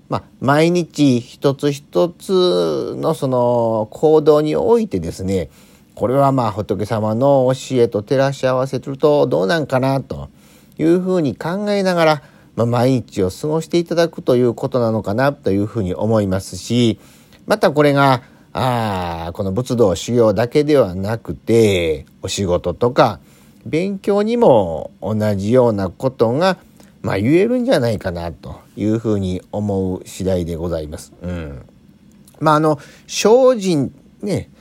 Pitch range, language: 95-150 Hz, Japanese